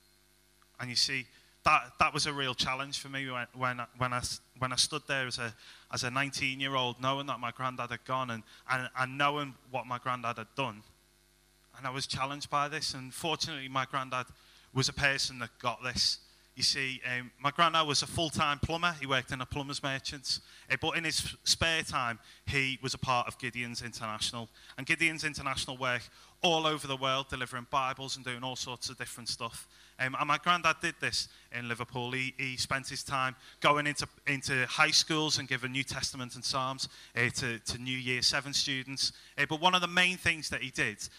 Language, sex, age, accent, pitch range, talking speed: English, male, 20-39, British, 120-140 Hz, 200 wpm